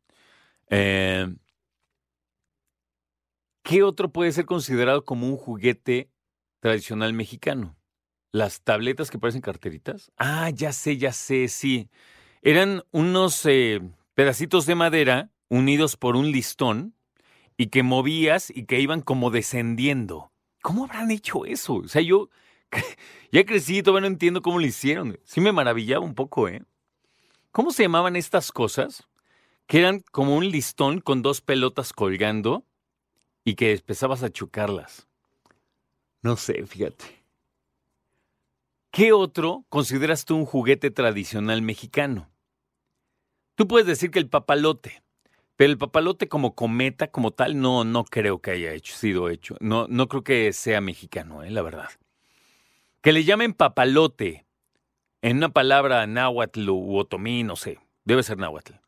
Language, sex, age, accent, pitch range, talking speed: Spanish, male, 40-59, Mexican, 110-155 Hz, 140 wpm